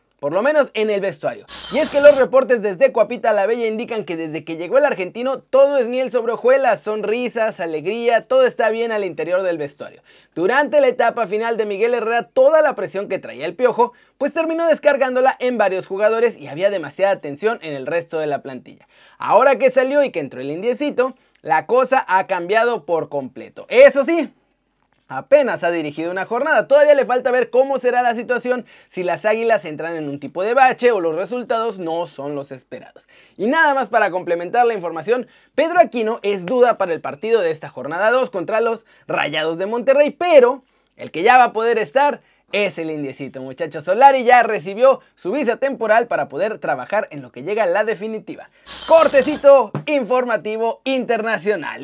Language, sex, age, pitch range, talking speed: Spanish, male, 30-49, 195-270 Hz, 190 wpm